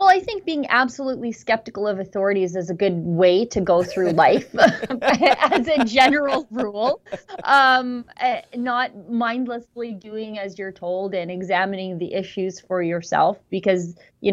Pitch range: 185-245 Hz